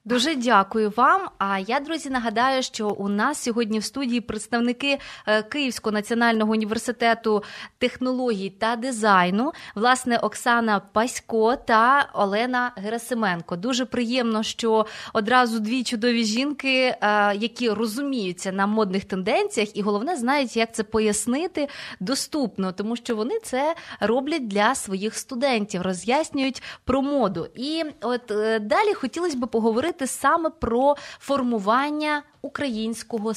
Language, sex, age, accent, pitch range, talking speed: Ukrainian, female, 20-39, native, 215-265 Hz, 120 wpm